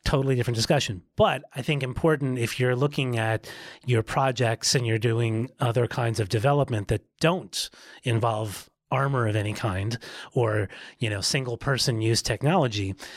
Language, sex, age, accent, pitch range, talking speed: English, male, 30-49, American, 115-135 Hz, 155 wpm